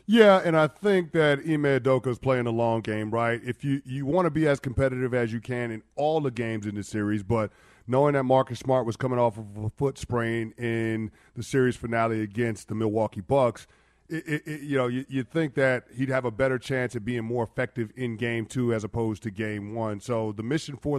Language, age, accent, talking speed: English, 40-59, American, 225 wpm